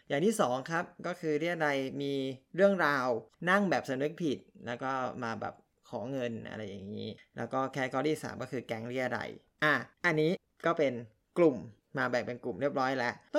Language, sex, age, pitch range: Thai, male, 20-39, 130-175 Hz